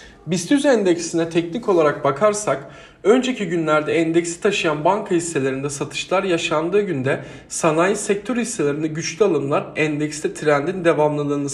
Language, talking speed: Turkish, 115 wpm